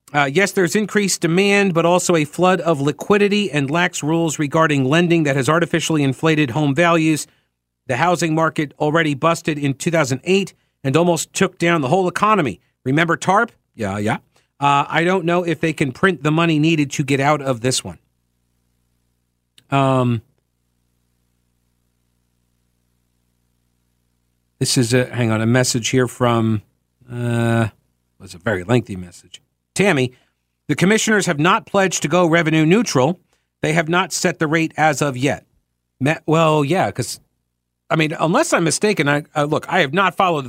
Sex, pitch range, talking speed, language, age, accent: male, 100-165 Hz, 160 wpm, English, 50-69, American